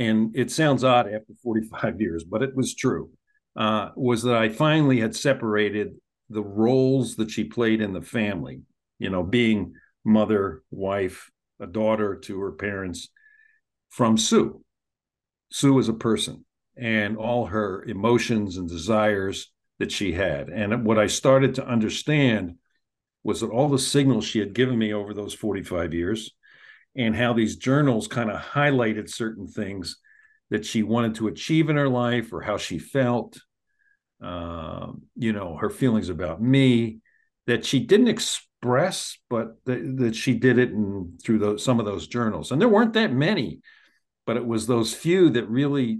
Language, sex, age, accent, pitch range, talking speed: English, male, 50-69, American, 105-130 Hz, 165 wpm